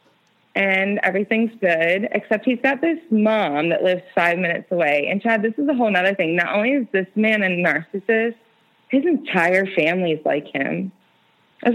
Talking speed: 180 wpm